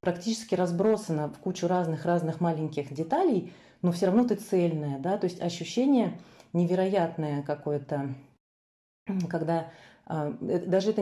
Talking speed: 115 wpm